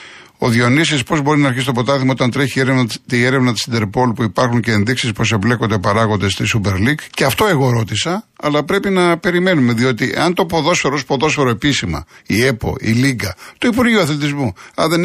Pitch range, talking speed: 115-140 Hz, 195 wpm